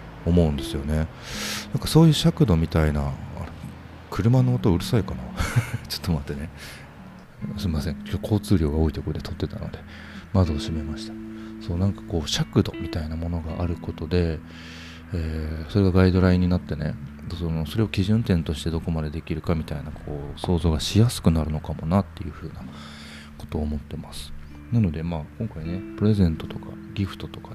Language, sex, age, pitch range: Japanese, male, 40-59, 75-100 Hz